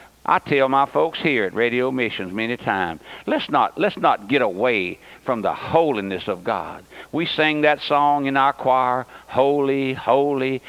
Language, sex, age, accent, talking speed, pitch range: English, male, 60-79, American, 170 wpm, 135-185 Hz